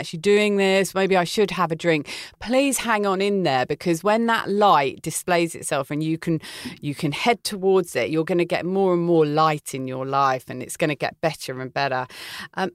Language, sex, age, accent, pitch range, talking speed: English, female, 40-59, British, 150-195 Hz, 225 wpm